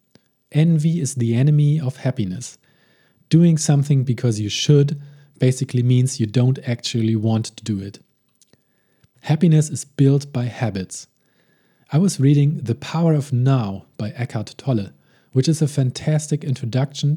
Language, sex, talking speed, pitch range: English, male, 140 wpm, 120-145 Hz